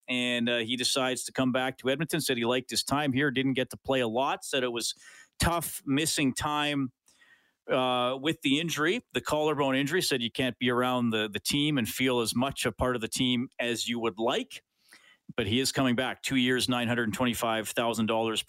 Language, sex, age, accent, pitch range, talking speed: English, male, 40-59, American, 115-140 Hz, 205 wpm